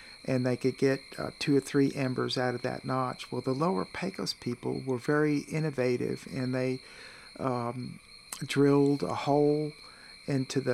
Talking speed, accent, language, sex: 160 wpm, American, English, male